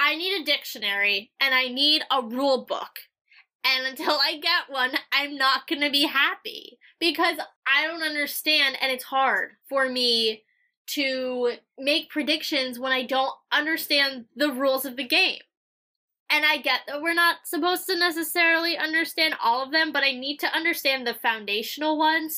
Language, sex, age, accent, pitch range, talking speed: English, female, 10-29, American, 255-315 Hz, 165 wpm